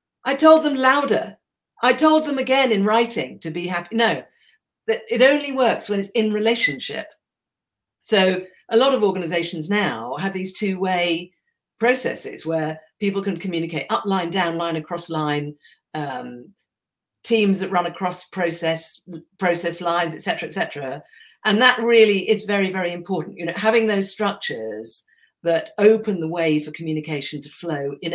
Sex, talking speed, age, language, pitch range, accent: female, 160 wpm, 50-69, English, 165-220 Hz, British